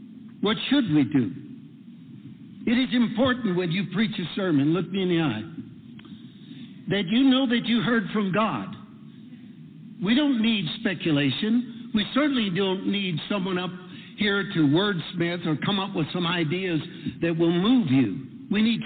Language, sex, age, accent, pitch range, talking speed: English, male, 60-79, American, 170-235 Hz, 160 wpm